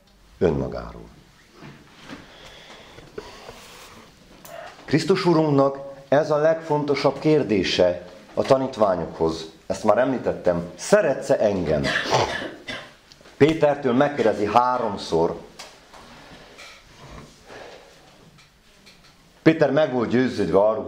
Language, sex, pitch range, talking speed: Hungarian, male, 105-160 Hz, 65 wpm